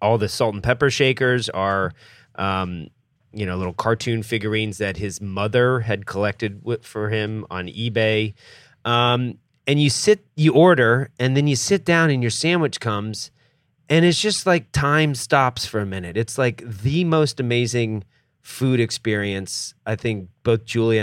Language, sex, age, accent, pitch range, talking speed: English, male, 30-49, American, 100-125 Hz, 165 wpm